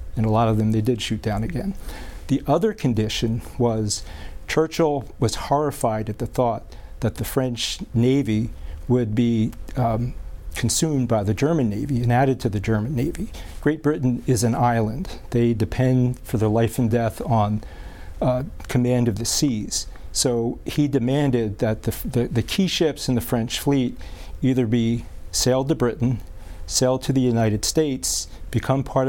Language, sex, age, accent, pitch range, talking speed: English, male, 40-59, American, 110-130 Hz, 165 wpm